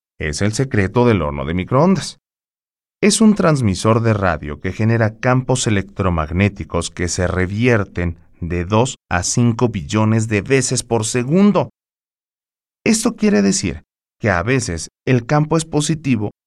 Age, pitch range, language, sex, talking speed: 30-49, 90-125 Hz, Spanish, male, 140 wpm